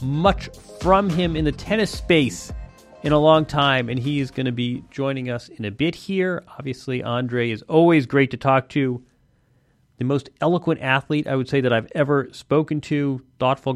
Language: English